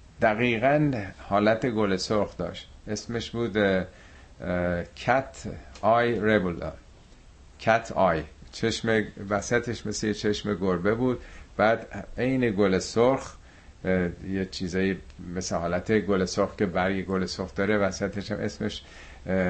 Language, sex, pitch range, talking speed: Persian, male, 90-105 Hz, 110 wpm